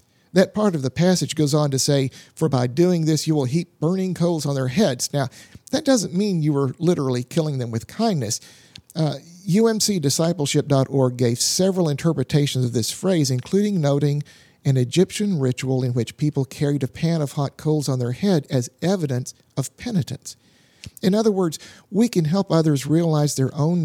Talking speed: 180 wpm